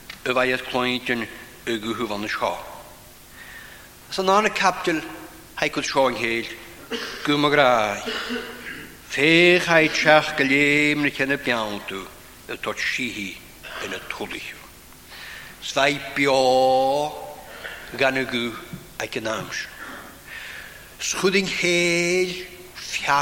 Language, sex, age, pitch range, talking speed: English, male, 60-79, 120-165 Hz, 70 wpm